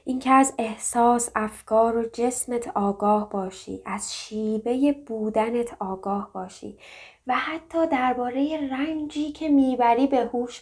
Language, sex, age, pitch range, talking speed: Persian, female, 20-39, 195-240 Hz, 120 wpm